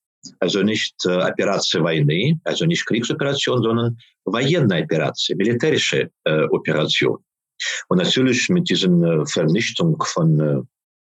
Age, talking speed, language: 50-69, 115 wpm, German